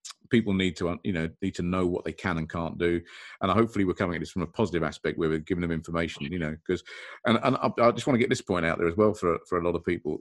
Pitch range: 85-105 Hz